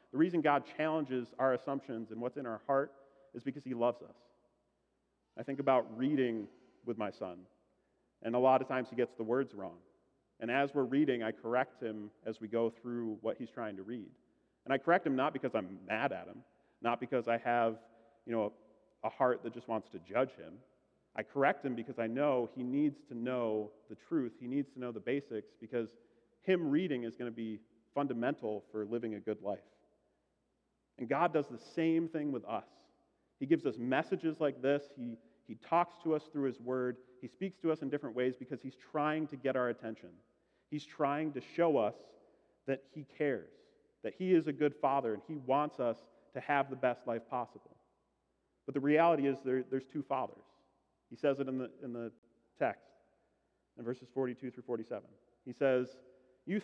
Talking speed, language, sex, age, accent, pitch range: 200 wpm, English, male, 40-59, American, 115-145 Hz